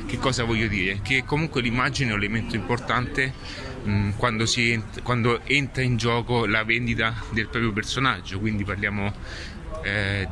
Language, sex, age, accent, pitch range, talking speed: Italian, male, 30-49, native, 100-125 Hz, 140 wpm